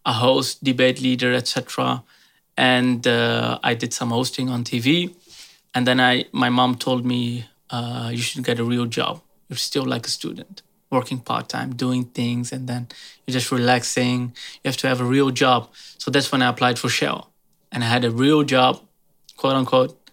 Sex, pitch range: male, 120-135 Hz